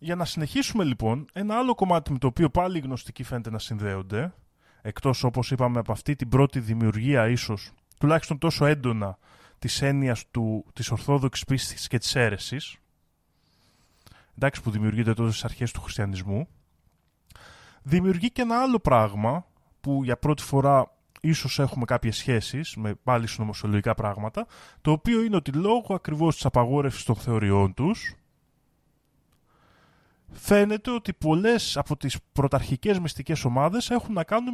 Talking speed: 145 wpm